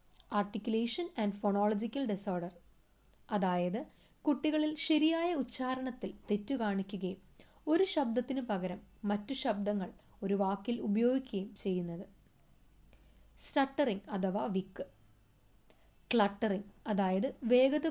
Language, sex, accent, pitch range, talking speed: Malayalam, female, native, 195-255 Hz, 85 wpm